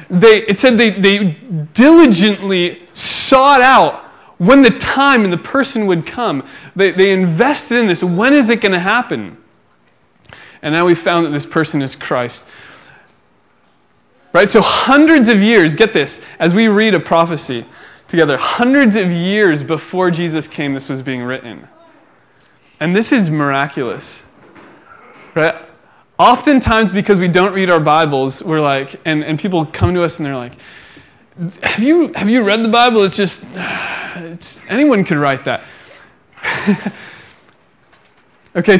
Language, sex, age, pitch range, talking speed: English, male, 20-39, 150-210 Hz, 150 wpm